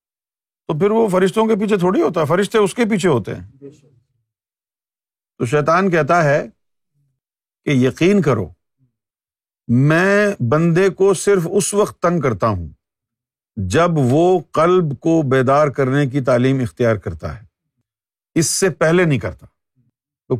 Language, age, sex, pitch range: Urdu, 50-69, male, 110-180 Hz